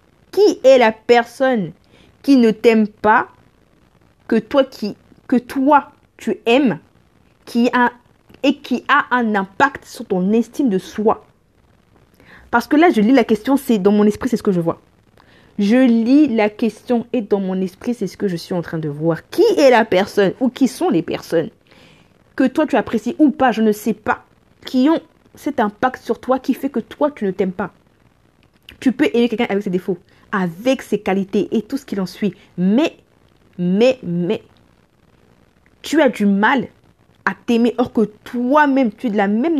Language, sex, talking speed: French, female, 185 wpm